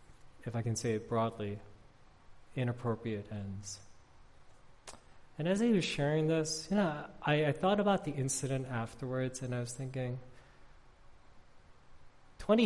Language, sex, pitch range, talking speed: English, male, 115-150 Hz, 135 wpm